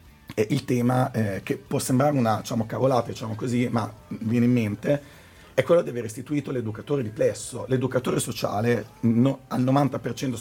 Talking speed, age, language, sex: 155 wpm, 40-59, Italian, male